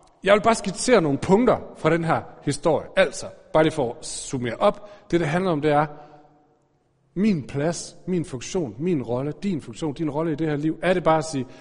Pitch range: 135-190 Hz